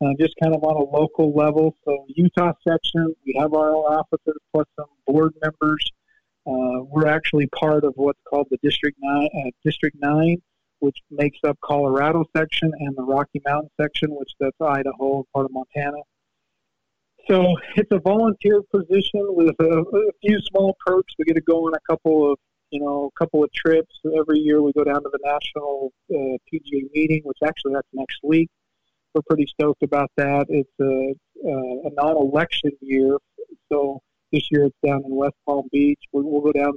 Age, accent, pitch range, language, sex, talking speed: 50-69, American, 140-155 Hz, English, male, 185 wpm